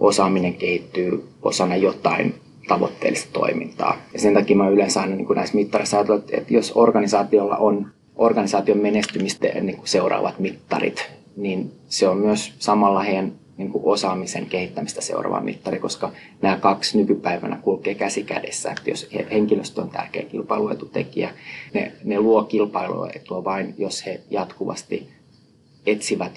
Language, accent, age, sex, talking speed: Finnish, native, 20-39, male, 130 wpm